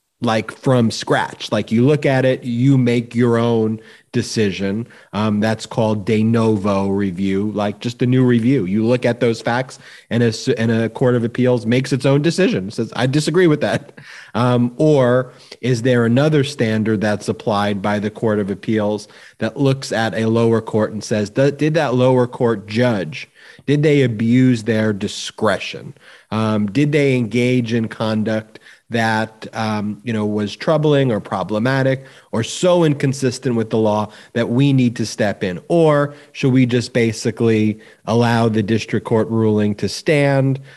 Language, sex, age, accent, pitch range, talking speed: English, male, 30-49, American, 110-125 Hz, 170 wpm